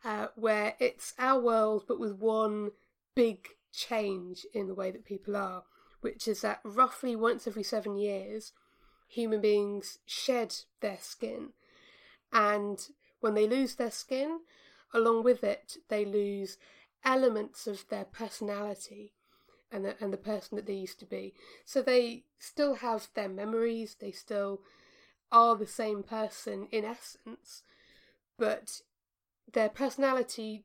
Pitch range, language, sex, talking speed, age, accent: 205-245 Hz, English, female, 140 wpm, 20-39, British